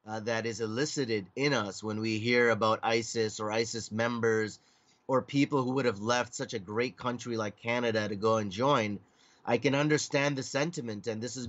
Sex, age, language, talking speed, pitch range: male, 30-49, English, 200 wpm, 115-145 Hz